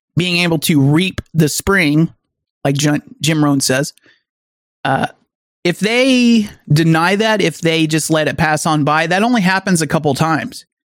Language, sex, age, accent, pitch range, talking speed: English, male, 30-49, American, 150-175 Hz, 165 wpm